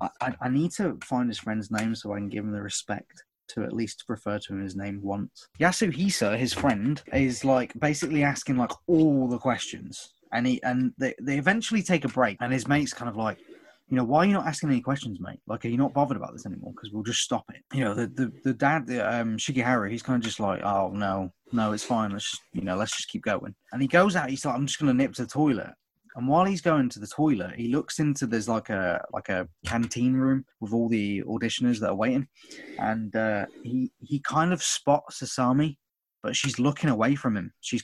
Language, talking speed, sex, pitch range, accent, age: English, 245 wpm, male, 105-140 Hz, British, 20-39